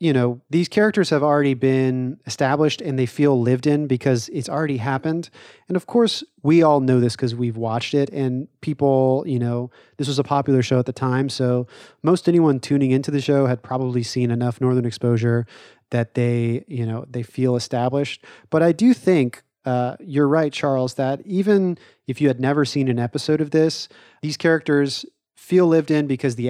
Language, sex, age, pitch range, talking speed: English, male, 30-49, 125-145 Hz, 195 wpm